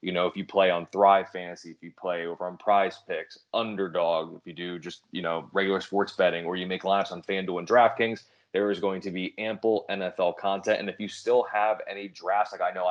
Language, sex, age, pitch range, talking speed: English, male, 20-39, 90-105 Hz, 235 wpm